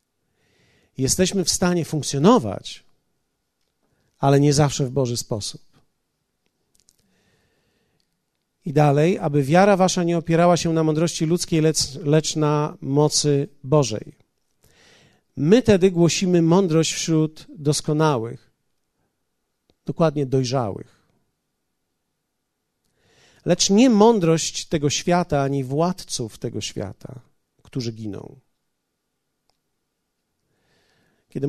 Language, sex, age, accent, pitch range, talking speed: Polish, male, 40-59, native, 150-185 Hz, 90 wpm